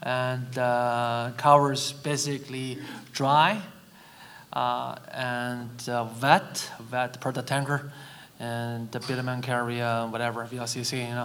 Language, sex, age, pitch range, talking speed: English, male, 20-39, 125-150 Hz, 105 wpm